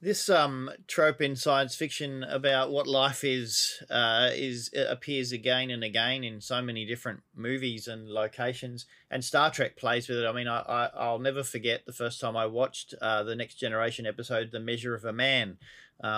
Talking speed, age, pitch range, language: 195 wpm, 30-49, 110-130 Hz, English